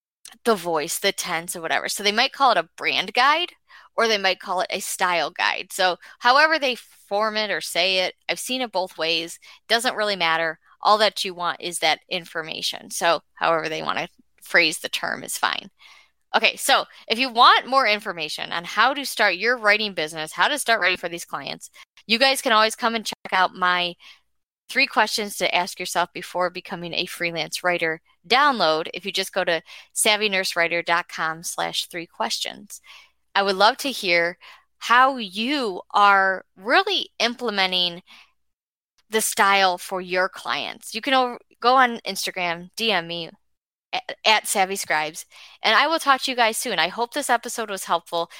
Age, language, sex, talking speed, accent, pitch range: 20-39, English, female, 180 wpm, American, 175-255 Hz